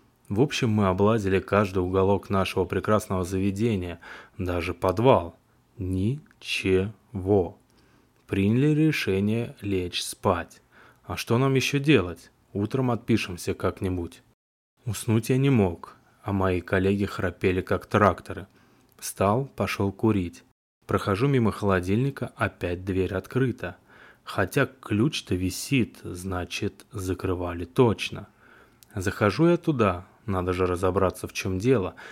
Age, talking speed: 20-39, 110 wpm